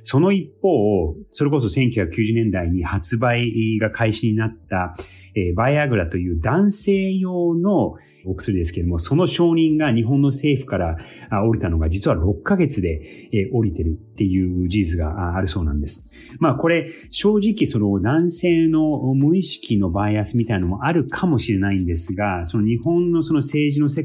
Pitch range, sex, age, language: 100-140 Hz, male, 30-49, Japanese